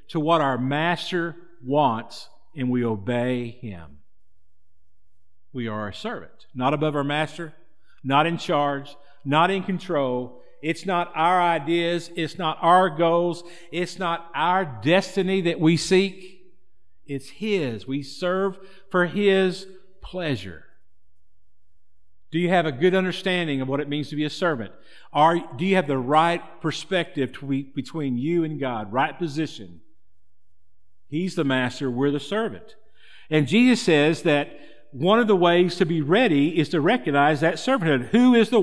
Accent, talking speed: American, 150 wpm